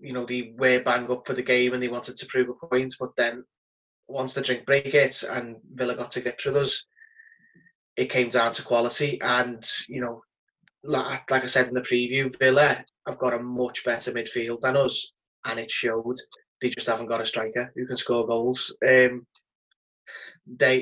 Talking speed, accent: 200 wpm, British